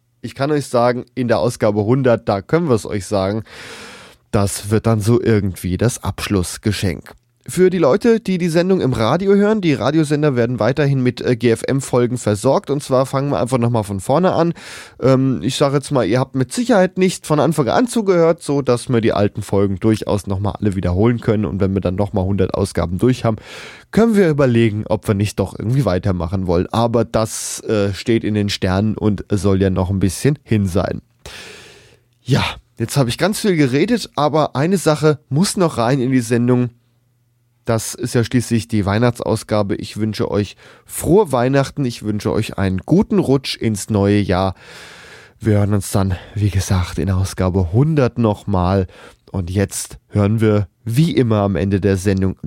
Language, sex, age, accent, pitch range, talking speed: German, male, 10-29, German, 100-130 Hz, 185 wpm